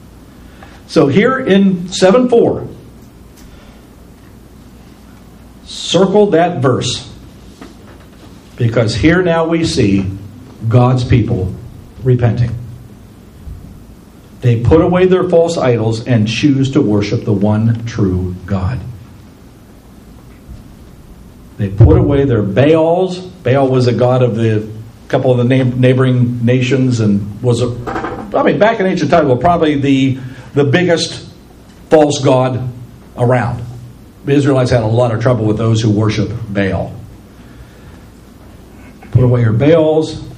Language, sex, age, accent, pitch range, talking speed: English, male, 50-69, American, 110-145 Hz, 115 wpm